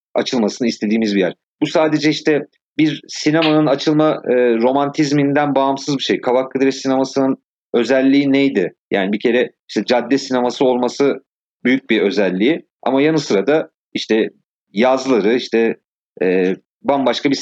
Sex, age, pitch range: male, 40-59, 110-155 Hz